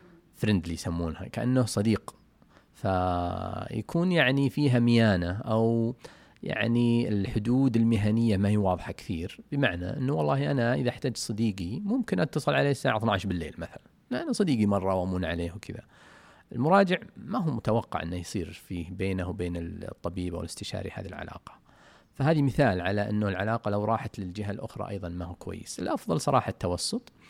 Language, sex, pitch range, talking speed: Arabic, male, 95-120 Hz, 145 wpm